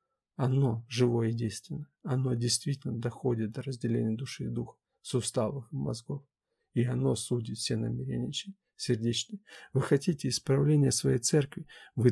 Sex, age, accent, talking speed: male, 50-69, native, 140 wpm